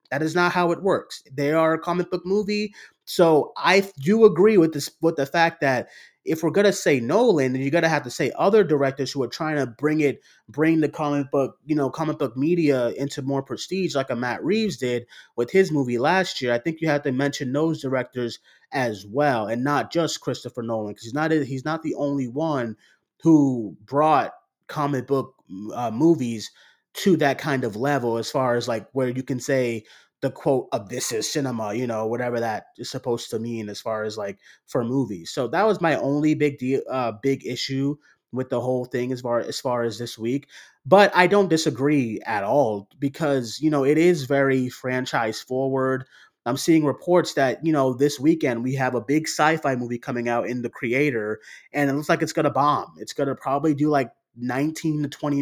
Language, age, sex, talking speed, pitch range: English, 30-49, male, 215 wpm, 125-155 Hz